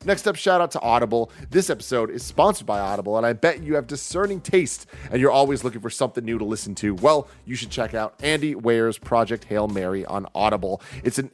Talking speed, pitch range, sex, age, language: 230 wpm, 100-130 Hz, male, 30-49, English